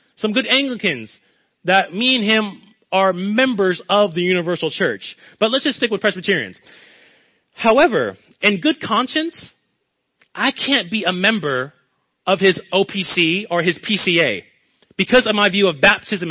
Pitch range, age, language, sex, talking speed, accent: 175-225 Hz, 30-49, English, male, 145 wpm, American